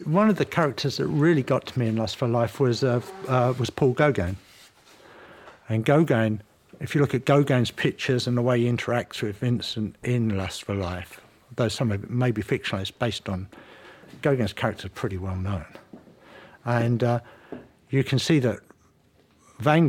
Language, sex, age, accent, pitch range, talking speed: English, male, 60-79, British, 105-135 Hz, 185 wpm